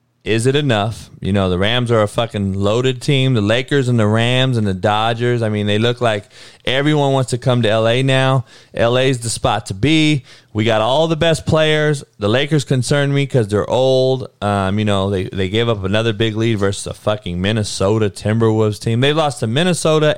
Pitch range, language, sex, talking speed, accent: 105-135 Hz, English, male, 210 wpm, American